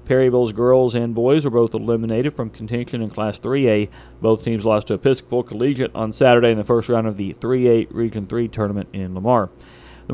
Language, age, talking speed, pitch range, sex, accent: English, 40-59, 195 wpm, 115-135 Hz, male, American